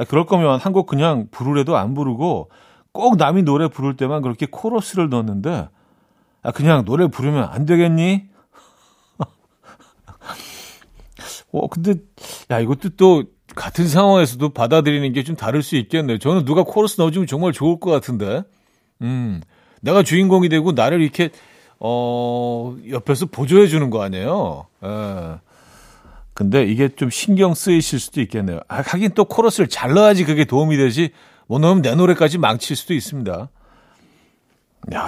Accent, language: native, Korean